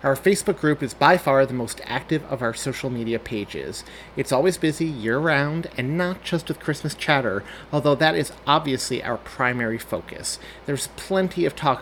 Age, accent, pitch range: 30-49, American, 125-160 Hz